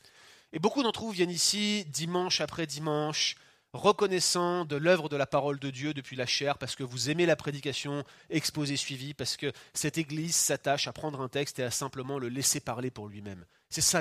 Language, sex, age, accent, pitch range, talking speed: French, male, 30-49, French, 135-175 Hz, 200 wpm